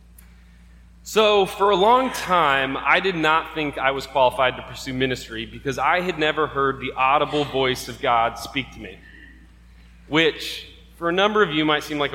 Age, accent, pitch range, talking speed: 20-39, American, 125-180 Hz, 185 wpm